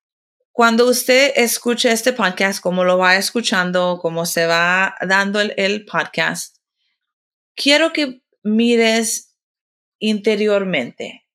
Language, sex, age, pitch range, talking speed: English, female, 30-49, 180-235 Hz, 105 wpm